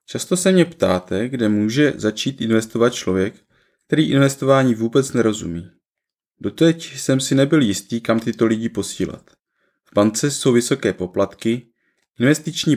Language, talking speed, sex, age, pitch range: Czech, 130 wpm, male, 20-39, 105-135 Hz